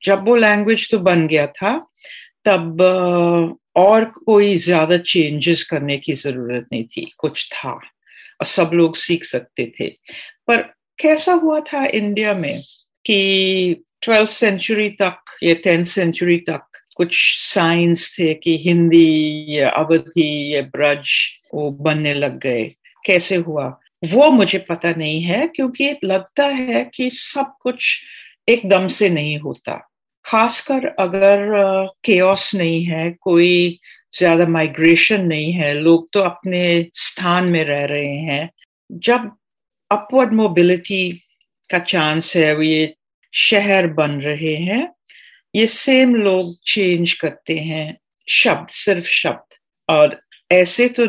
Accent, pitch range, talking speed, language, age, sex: native, 165-215 Hz, 130 wpm, Hindi, 60-79, female